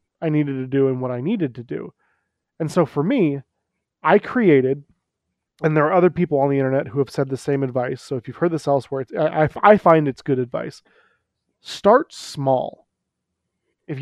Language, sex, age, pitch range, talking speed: English, male, 20-39, 135-170 Hz, 195 wpm